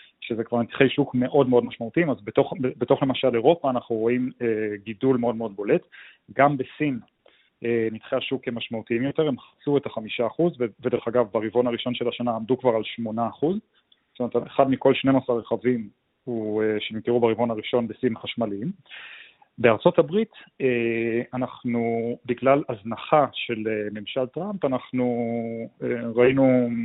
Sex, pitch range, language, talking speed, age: male, 115-135 Hz, Hebrew, 150 wpm, 30-49